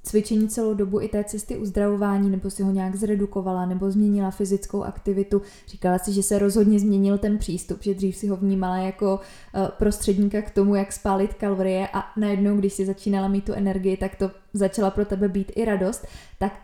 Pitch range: 190-205 Hz